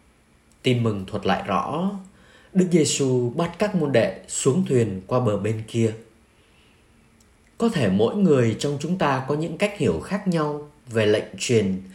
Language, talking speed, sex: Vietnamese, 165 wpm, male